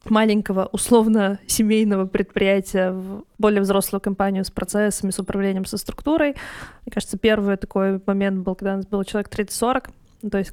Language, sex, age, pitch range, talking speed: Russian, female, 20-39, 190-215 Hz, 155 wpm